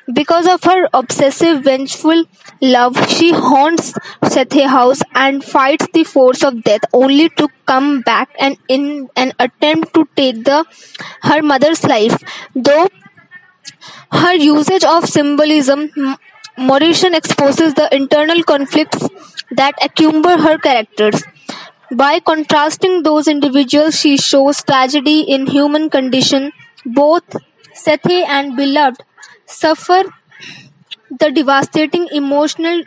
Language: English